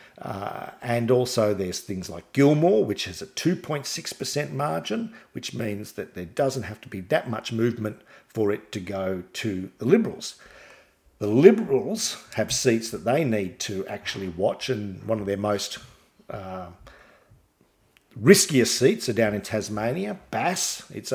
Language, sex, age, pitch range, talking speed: English, male, 50-69, 105-130 Hz, 155 wpm